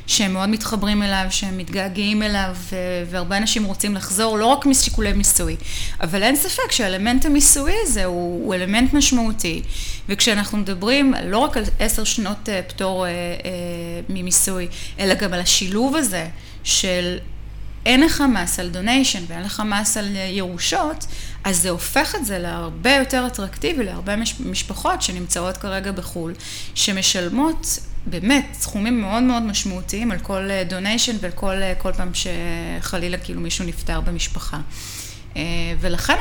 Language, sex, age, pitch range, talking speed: Hebrew, female, 30-49, 175-220 Hz, 140 wpm